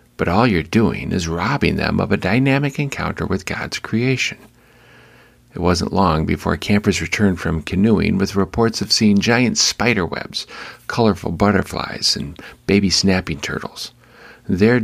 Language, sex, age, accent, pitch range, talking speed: English, male, 50-69, American, 85-110 Hz, 145 wpm